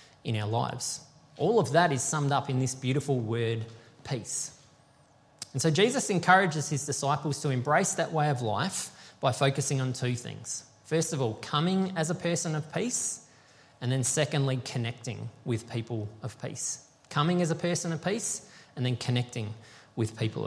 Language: English